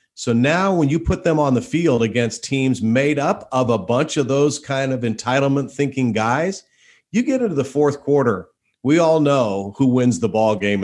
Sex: male